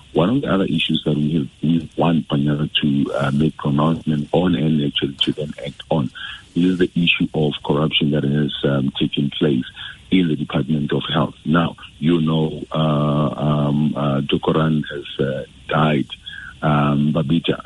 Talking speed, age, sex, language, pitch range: 160 wpm, 50-69, male, English, 70-80 Hz